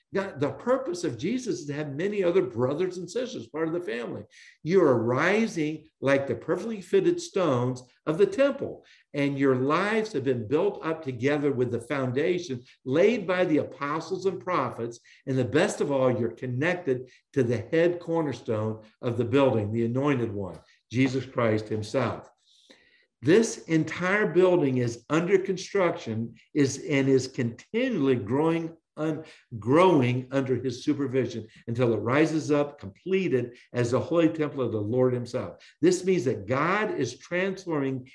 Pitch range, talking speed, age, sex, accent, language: 125-175 Hz, 155 wpm, 60-79, male, American, English